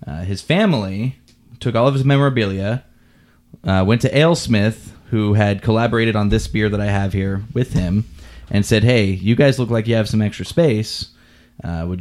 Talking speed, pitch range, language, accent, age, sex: 190 wpm, 100-120 Hz, English, American, 20-39, male